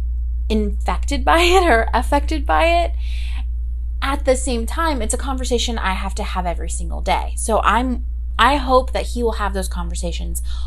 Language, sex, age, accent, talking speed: English, female, 30-49, American, 175 wpm